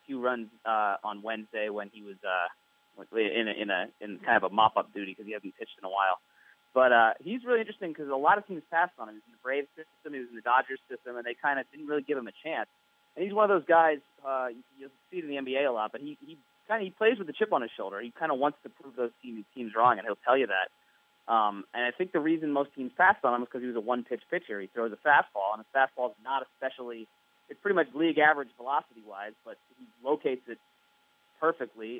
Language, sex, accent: English, male, American